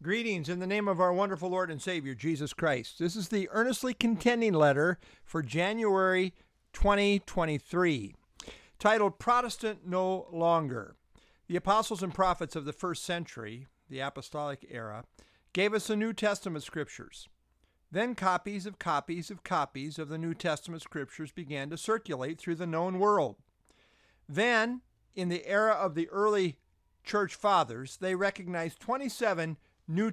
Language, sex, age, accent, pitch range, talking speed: English, male, 50-69, American, 140-200 Hz, 145 wpm